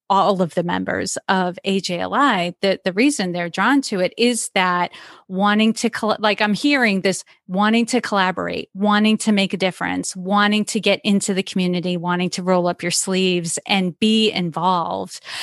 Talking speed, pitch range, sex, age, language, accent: 170 wpm, 185-225 Hz, female, 40-59, English, American